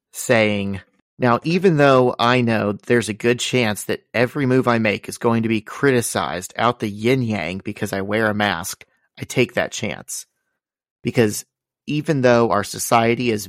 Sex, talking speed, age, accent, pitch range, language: male, 175 wpm, 30-49, American, 105-120 Hz, English